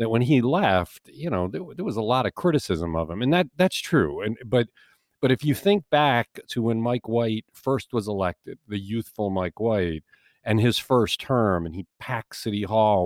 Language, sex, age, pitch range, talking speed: English, male, 50-69, 95-135 Hz, 210 wpm